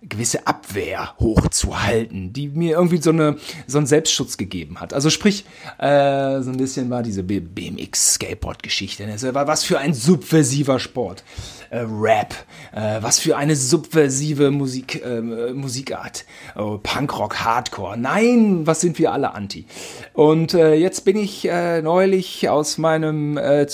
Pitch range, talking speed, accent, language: 130-180 Hz, 135 wpm, German, German